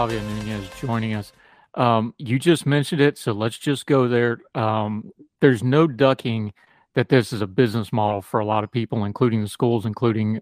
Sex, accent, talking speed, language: male, American, 190 wpm, English